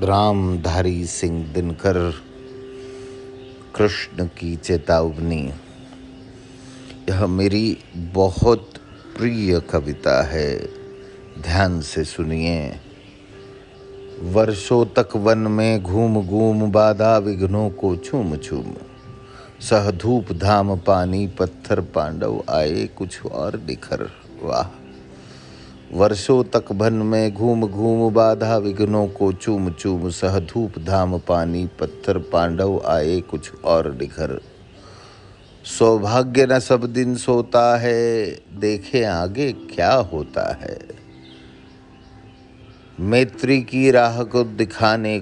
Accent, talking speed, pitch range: native, 100 wpm, 90-115 Hz